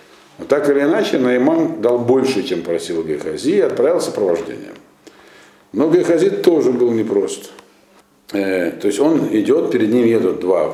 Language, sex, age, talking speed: Russian, male, 50-69, 150 wpm